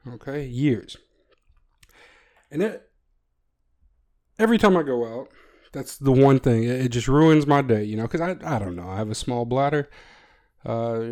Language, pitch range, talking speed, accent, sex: English, 115-155 Hz, 175 wpm, American, male